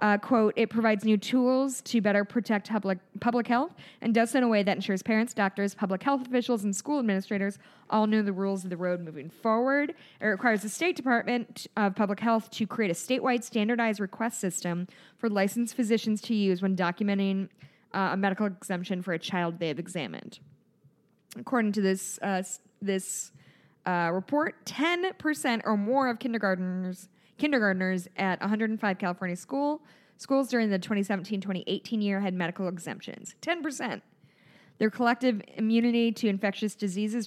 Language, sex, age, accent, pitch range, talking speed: English, female, 10-29, American, 185-230 Hz, 160 wpm